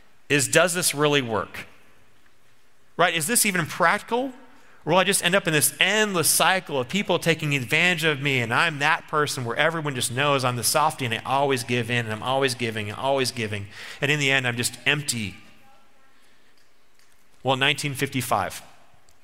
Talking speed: 180 wpm